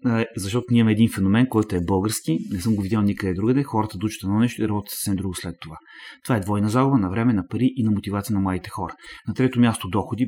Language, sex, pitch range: Bulgarian, male, 100-120 Hz